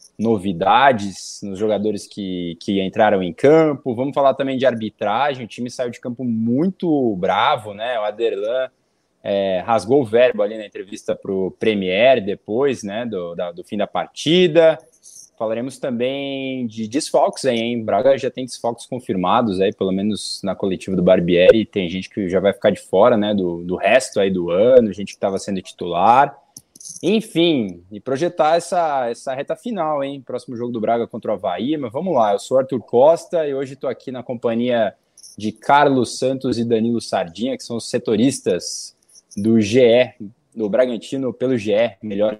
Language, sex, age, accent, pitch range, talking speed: Portuguese, male, 20-39, Brazilian, 110-140 Hz, 175 wpm